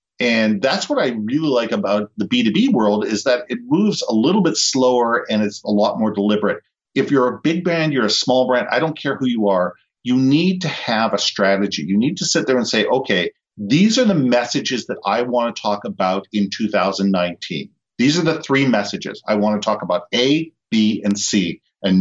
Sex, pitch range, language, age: male, 100-135 Hz, English, 50-69